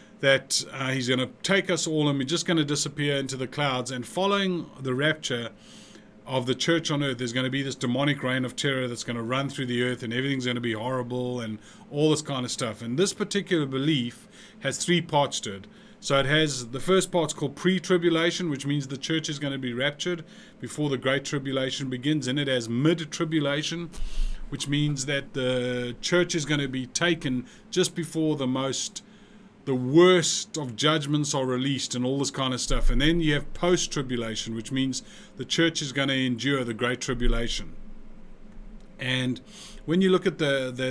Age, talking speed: 30-49, 205 wpm